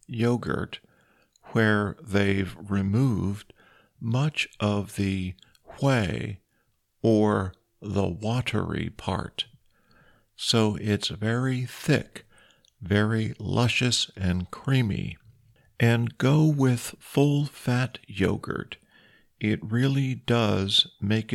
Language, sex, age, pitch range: Thai, male, 50-69, 100-120 Hz